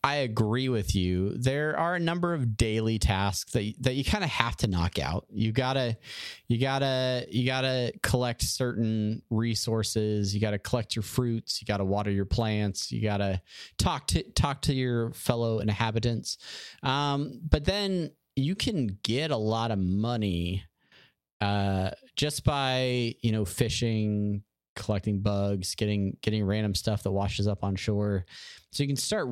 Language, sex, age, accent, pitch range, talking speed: English, male, 30-49, American, 100-130 Hz, 160 wpm